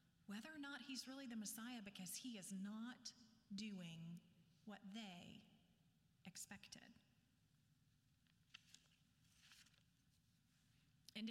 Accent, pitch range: American, 205-265 Hz